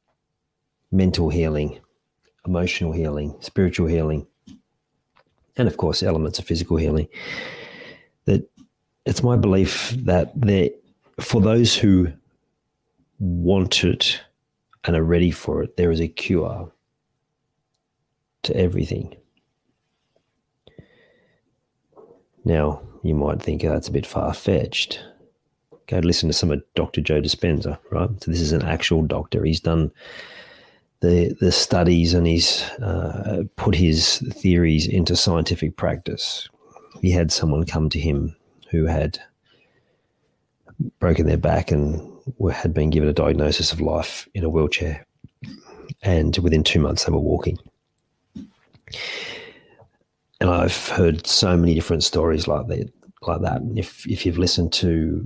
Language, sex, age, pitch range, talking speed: English, male, 40-59, 80-90 Hz, 130 wpm